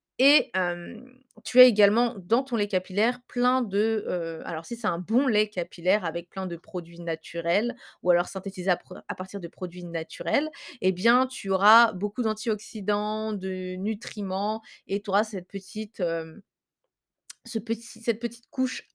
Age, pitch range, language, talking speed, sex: 20-39, 185-235 Hz, French, 165 wpm, female